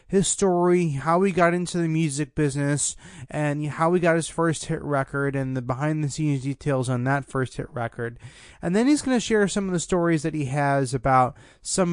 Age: 20-39